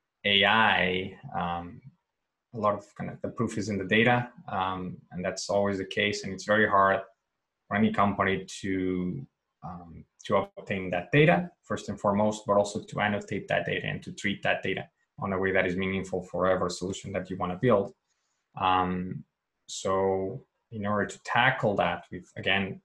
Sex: male